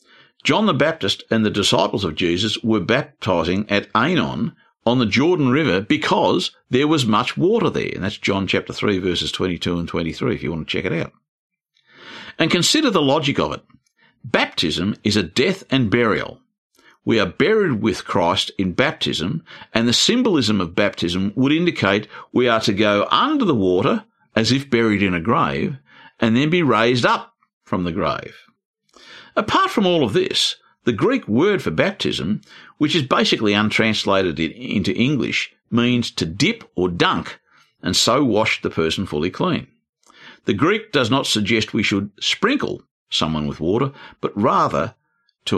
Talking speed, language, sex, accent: 165 wpm, English, male, Australian